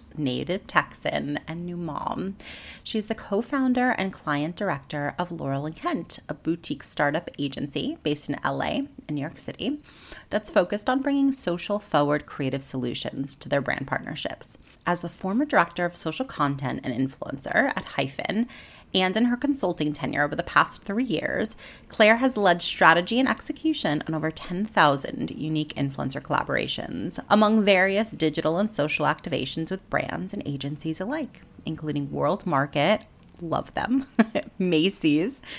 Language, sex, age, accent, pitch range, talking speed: English, female, 30-49, American, 145-210 Hz, 145 wpm